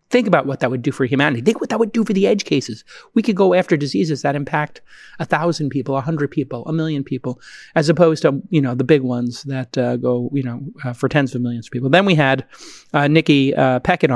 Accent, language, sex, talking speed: American, English, male, 245 wpm